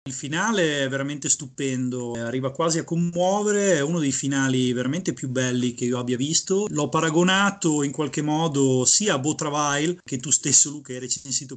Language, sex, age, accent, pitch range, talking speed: Italian, male, 30-49, native, 130-155 Hz, 180 wpm